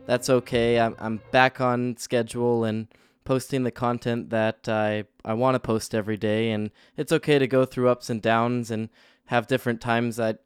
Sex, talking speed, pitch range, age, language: male, 180 wpm, 115-130 Hz, 20-39, English